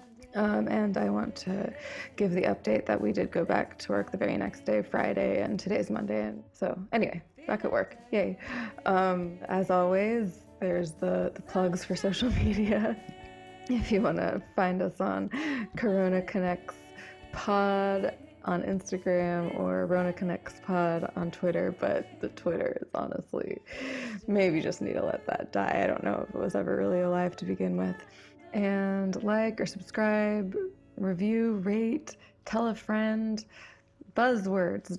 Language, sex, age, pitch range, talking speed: English, female, 20-39, 170-215 Hz, 160 wpm